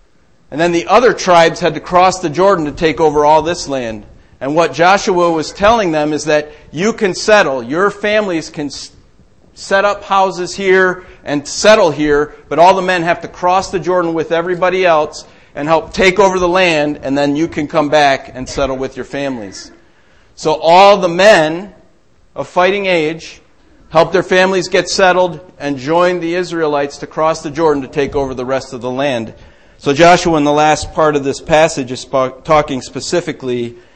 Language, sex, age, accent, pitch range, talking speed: English, male, 40-59, American, 145-185 Hz, 185 wpm